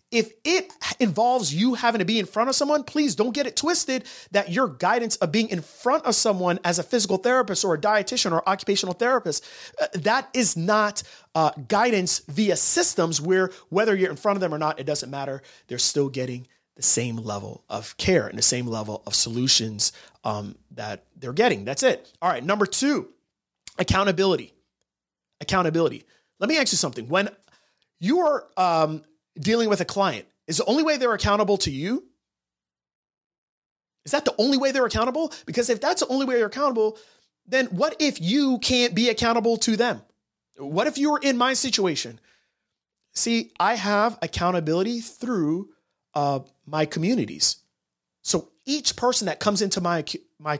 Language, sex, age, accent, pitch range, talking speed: English, male, 30-49, American, 155-250 Hz, 175 wpm